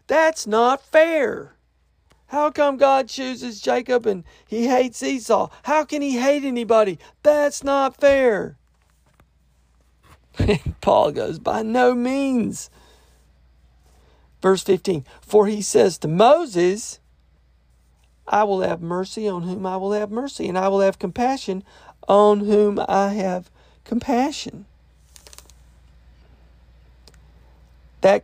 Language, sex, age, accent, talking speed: English, male, 50-69, American, 115 wpm